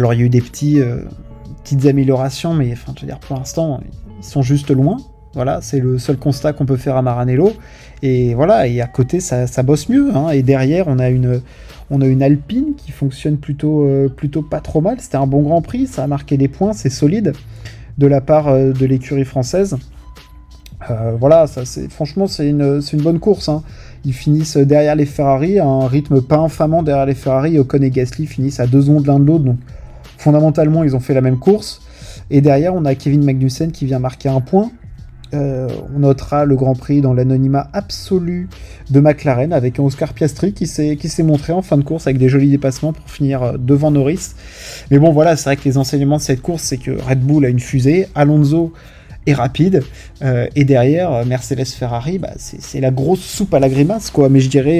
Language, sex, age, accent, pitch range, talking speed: French, male, 20-39, French, 130-155 Hz, 220 wpm